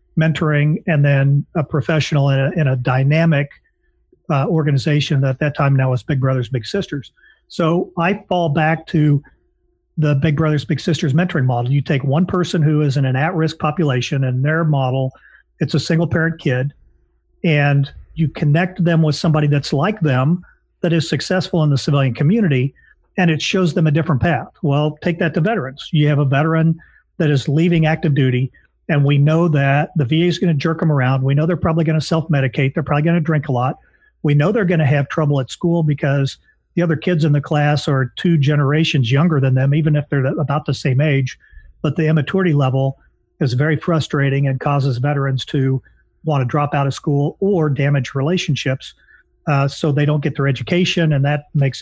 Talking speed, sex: 200 wpm, male